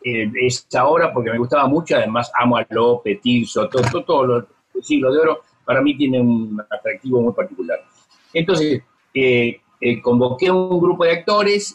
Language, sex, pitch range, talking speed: Spanish, male, 115-175 Hz, 185 wpm